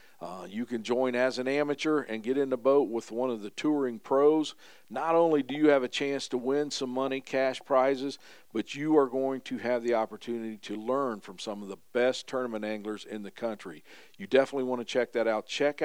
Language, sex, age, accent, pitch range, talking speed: English, male, 50-69, American, 110-135 Hz, 225 wpm